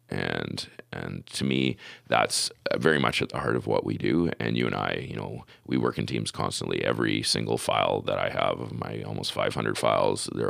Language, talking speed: English, 210 wpm